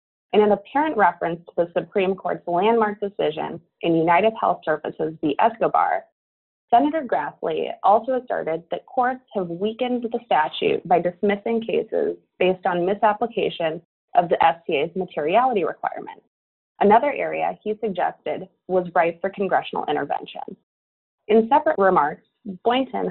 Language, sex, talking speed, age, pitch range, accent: English, female, 130 wpm, 20-39, 175-245 Hz, American